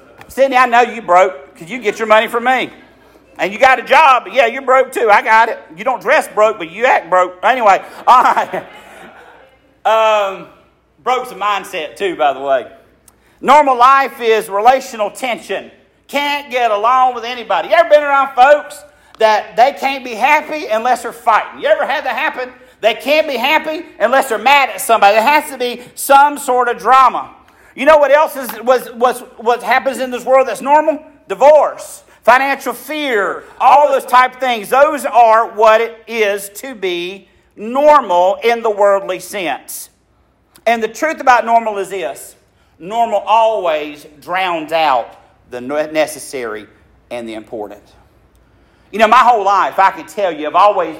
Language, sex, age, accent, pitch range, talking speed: English, male, 50-69, American, 200-270 Hz, 175 wpm